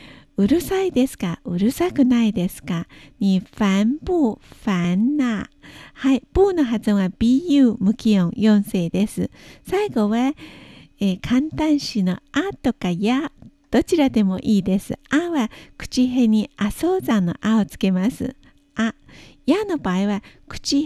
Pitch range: 205-280 Hz